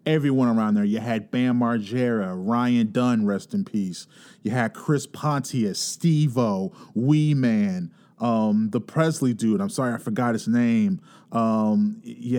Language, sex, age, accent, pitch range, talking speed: English, male, 30-49, American, 120-190 Hz, 130 wpm